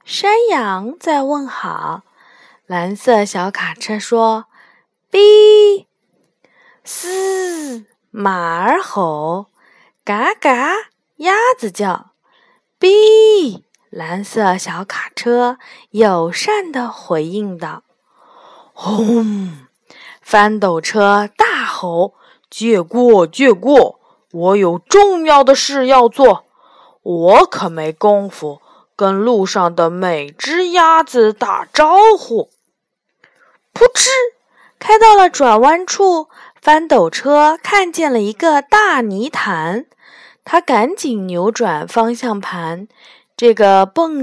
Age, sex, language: 20-39, female, Chinese